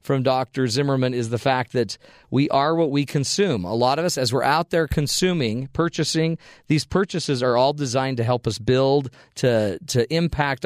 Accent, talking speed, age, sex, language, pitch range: American, 190 wpm, 40-59, male, English, 120-155 Hz